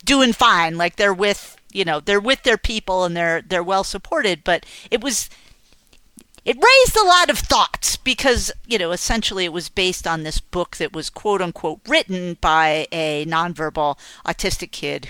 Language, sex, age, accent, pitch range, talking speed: English, female, 50-69, American, 160-210 Hz, 175 wpm